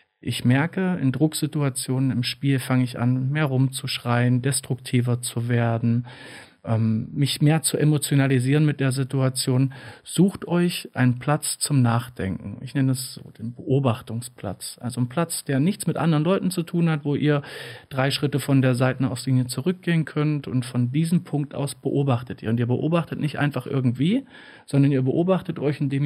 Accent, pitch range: German, 130-160 Hz